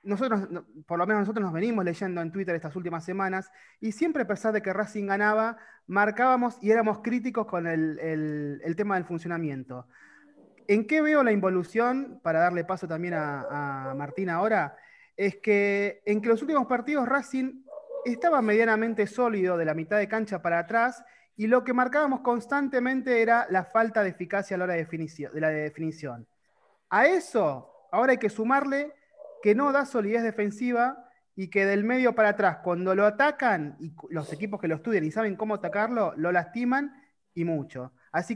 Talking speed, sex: 175 wpm, male